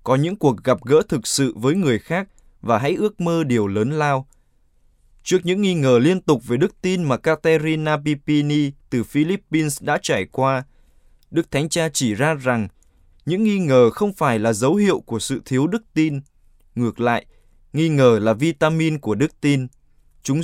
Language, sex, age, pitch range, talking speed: Vietnamese, male, 20-39, 120-165 Hz, 185 wpm